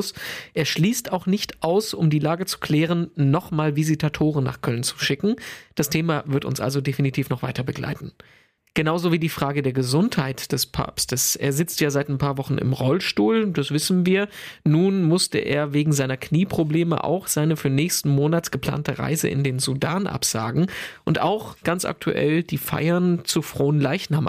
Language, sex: German, male